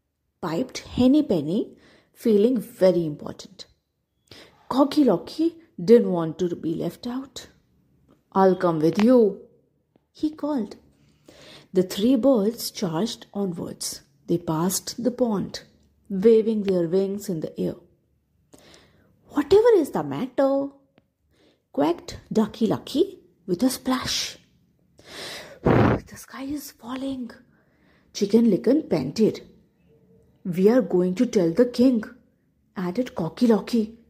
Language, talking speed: English, 105 wpm